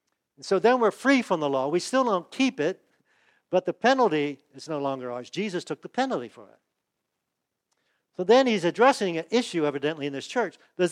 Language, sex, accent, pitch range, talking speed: English, male, American, 155-230 Hz, 200 wpm